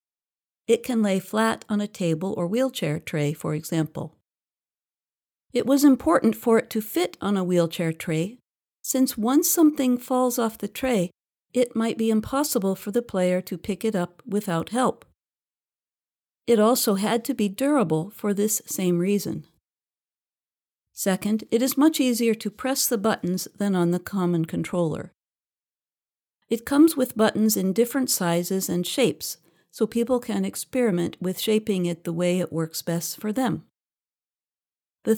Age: 50-69